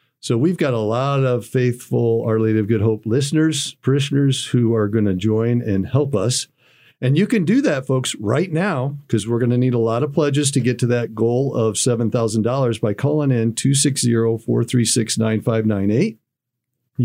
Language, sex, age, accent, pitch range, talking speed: English, male, 50-69, American, 110-140 Hz, 175 wpm